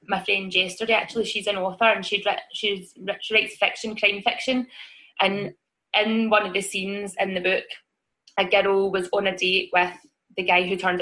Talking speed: 180 wpm